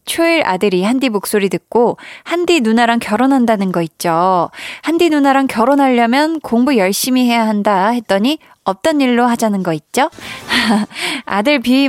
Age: 20-39